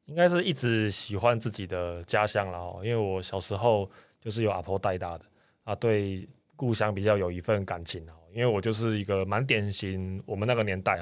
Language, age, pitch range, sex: Chinese, 20-39, 90-105 Hz, male